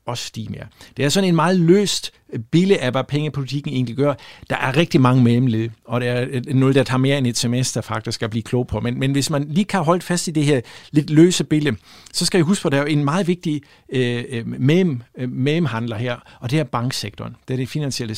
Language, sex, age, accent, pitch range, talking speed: Danish, male, 60-79, native, 120-150 Hz, 235 wpm